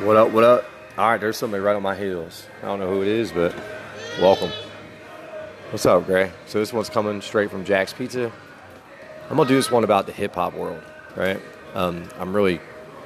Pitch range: 90-105 Hz